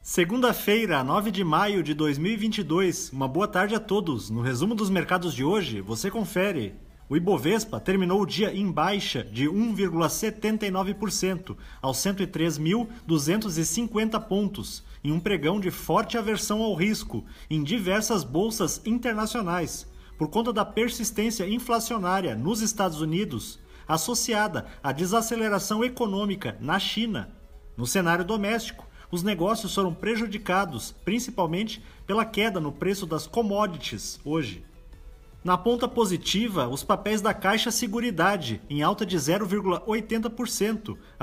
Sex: male